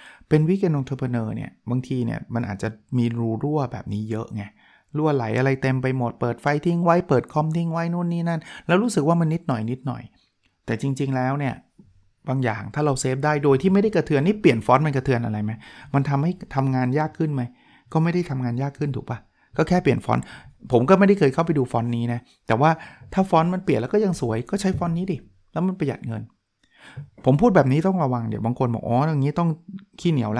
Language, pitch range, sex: Thai, 120-155 Hz, male